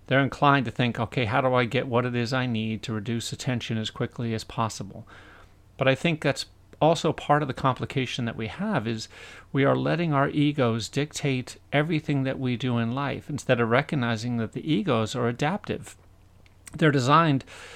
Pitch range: 110-145 Hz